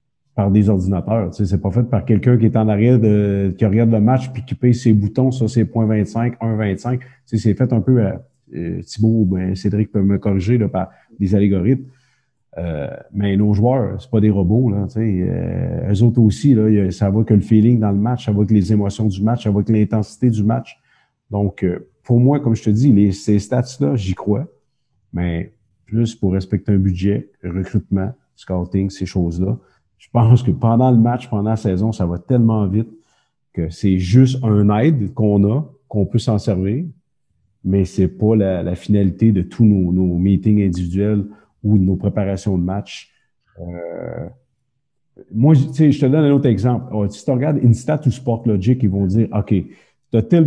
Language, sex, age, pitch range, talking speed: French, male, 50-69, 100-120 Hz, 200 wpm